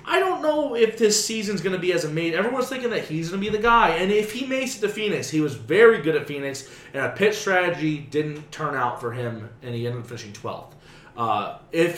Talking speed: 255 wpm